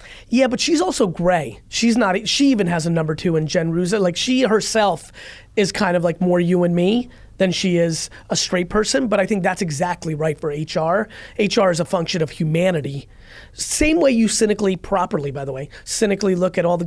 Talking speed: 215 wpm